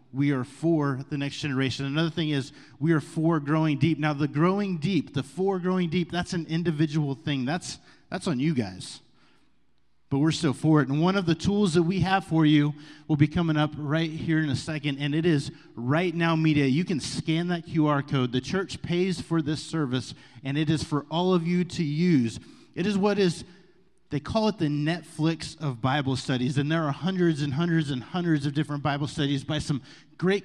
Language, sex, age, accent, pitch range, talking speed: English, male, 30-49, American, 140-165 Hz, 215 wpm